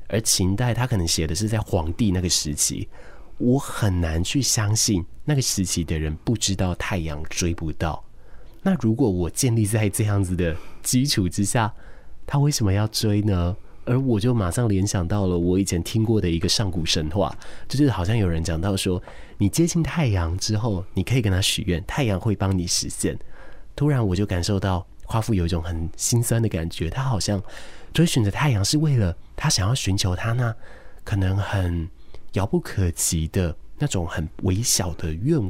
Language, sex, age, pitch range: Chinese, male, 30-49, 90-115 Hz